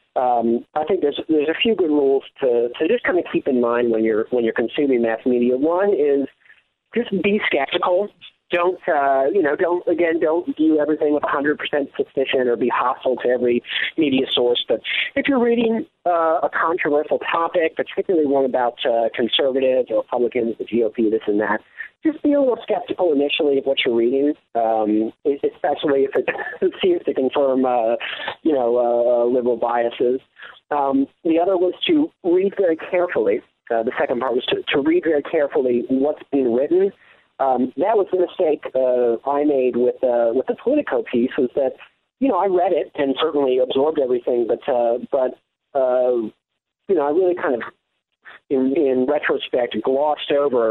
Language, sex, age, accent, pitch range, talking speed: English, male, 40-59, American, 125-195 Hz, 180 wpm